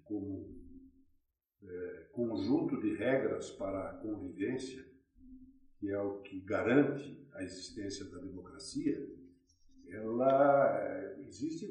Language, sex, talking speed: Portuguese, male, 85 wpm